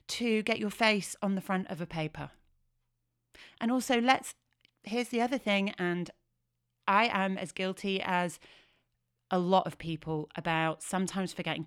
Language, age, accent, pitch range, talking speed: English, 30-49, British, 155-205 Hz, 155 wpm